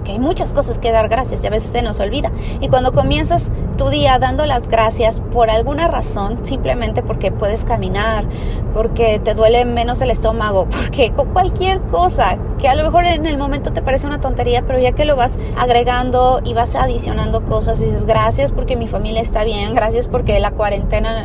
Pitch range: 200-285 Hz